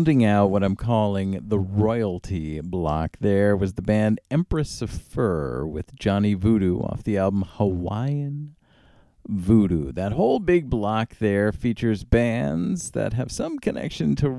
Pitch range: 100-135 Hz